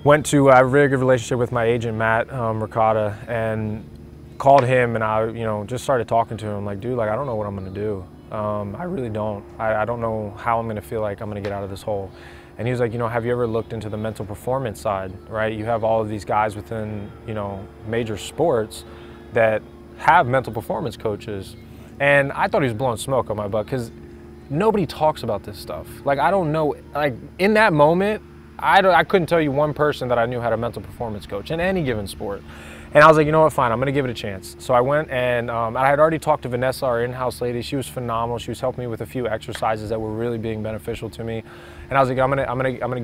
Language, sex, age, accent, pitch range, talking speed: English, male, 20-39, American, 105-130 Hz, 255 wpm